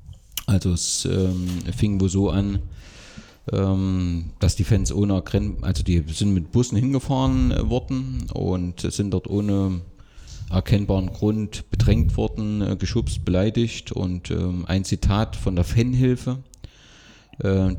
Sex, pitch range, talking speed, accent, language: male, 90-110 Hz, 135 wpm, German, German